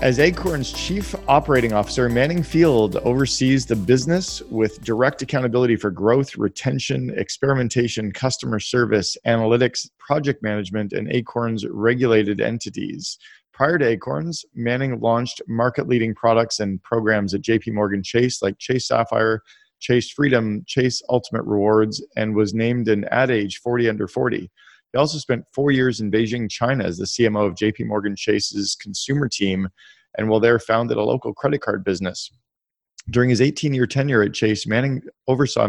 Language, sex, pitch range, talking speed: English, male, 105-125 Hz, 150 wpm